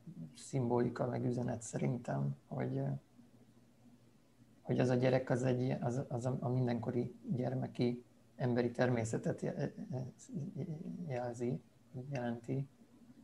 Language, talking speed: Hungarian, 90 wpm